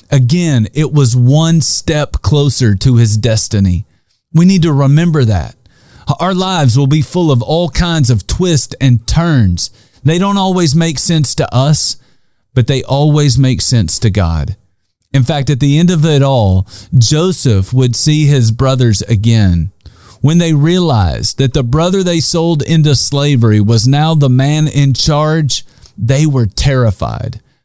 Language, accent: English, American